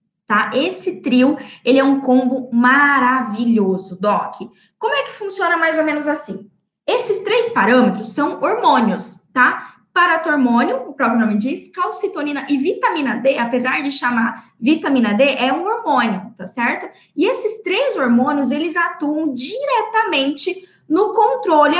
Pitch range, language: 240-350 Hz, Portuguese